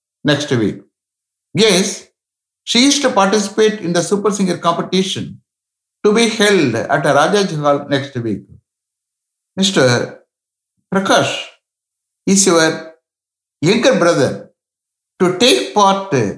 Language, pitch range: English, 150-210 Hz